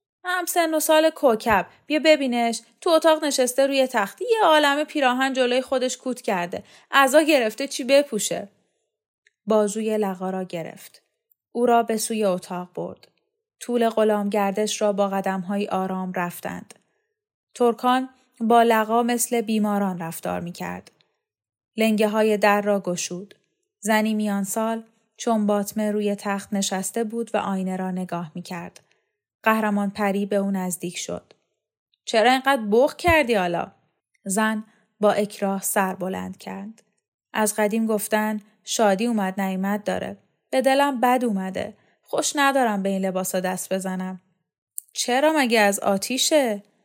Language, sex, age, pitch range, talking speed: Persian, female, 10-29, 195-250 Hz, 135 wpm